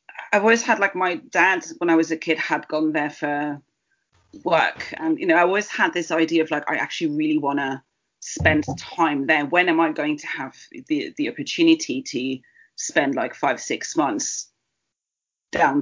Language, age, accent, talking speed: English, 30-49, British, 190 wpm